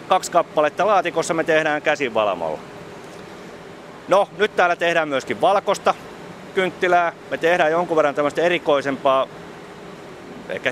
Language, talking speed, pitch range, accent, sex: Finnish, 110 wpm, 135-175 Hz, native, male